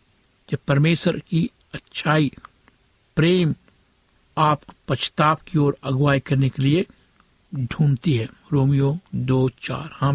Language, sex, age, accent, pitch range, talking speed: Hindi, male, 60-79, native, 130-165 Hz, 105 wpm